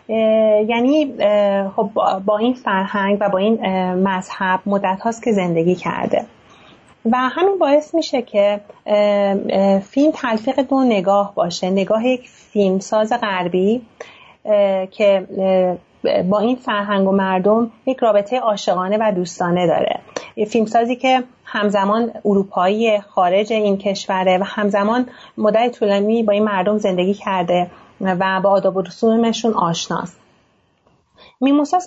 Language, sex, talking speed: Persian, female, 130 wpm